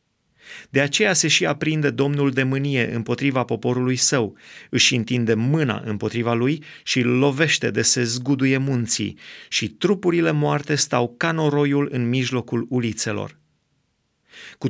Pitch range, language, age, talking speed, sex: 120-150 Hz, Romanian, 30-49, 135 wpm, male